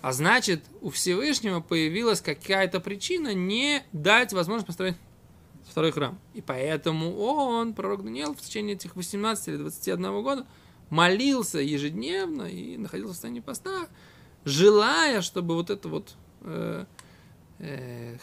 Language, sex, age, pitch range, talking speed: Russian, male, 20-39, 150-210 Hz, 125 wpm